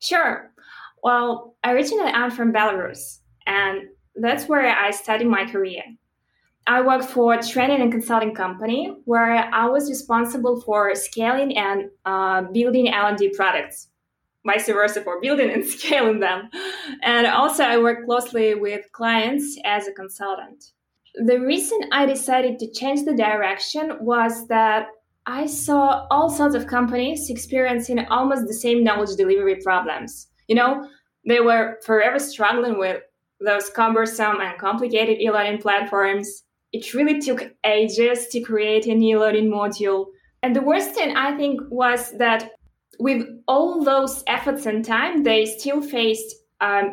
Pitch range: 210-265 Hz